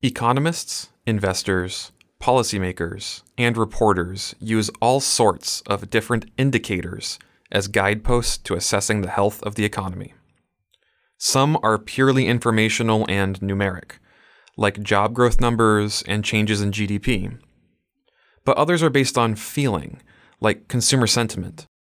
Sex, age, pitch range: male, 20-39, 100-120 Hz